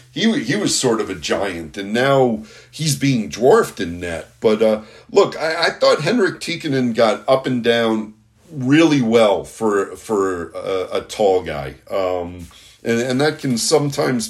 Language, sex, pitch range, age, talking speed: English, male, 100-145 Hz, 50-69, 170 wpm